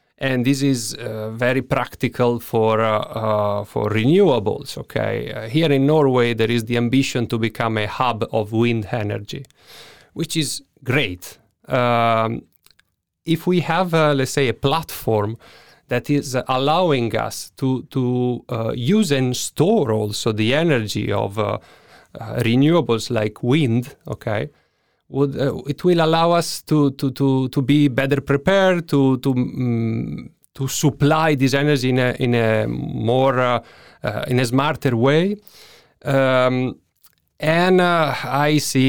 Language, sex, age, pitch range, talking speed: English, male, 30-49, 115-140 Hz, 145 wpm